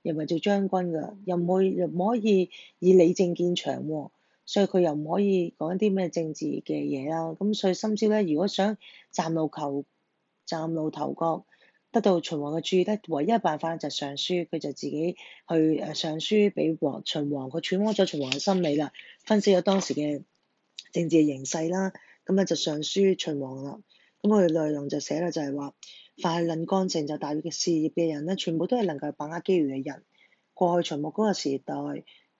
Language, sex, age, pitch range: Chinese, female, 20-39, 150-190 Hz